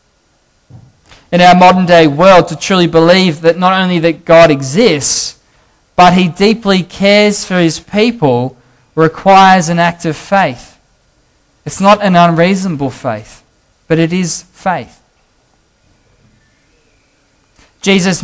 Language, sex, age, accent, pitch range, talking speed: English, male, 20-39, Australian, 155-190 Hz, 120 wpm